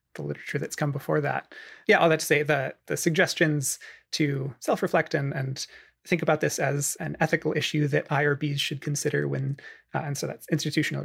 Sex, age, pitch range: male, 30-49, 135-155 Hz